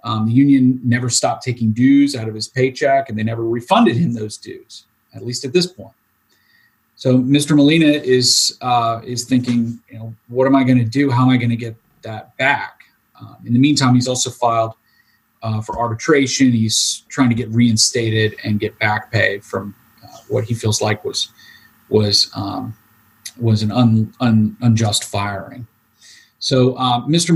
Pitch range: 115-135 Hz